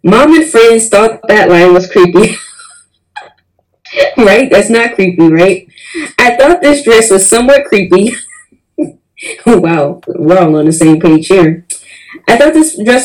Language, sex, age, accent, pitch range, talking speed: English, female, 10-29, American, 175-230 Hz, 145 wpm